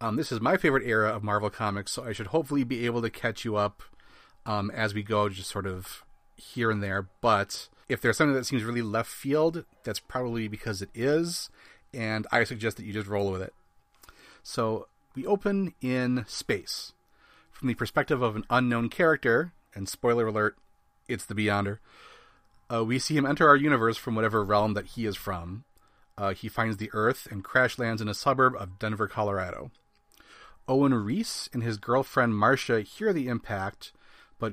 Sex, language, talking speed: male, English, 190 wpm